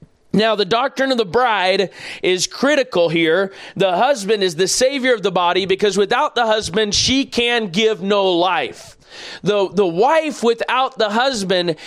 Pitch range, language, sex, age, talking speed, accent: 205-255 Hz, English, male, 40-59, 160 wpm, American